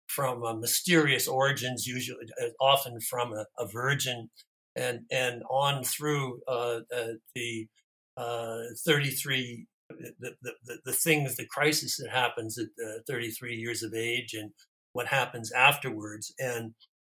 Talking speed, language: 140 wpm, English